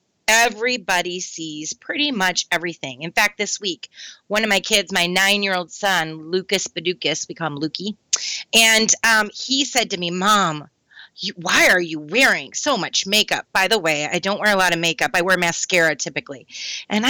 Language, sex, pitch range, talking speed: English, female, 180-250 Hz, 180 wpm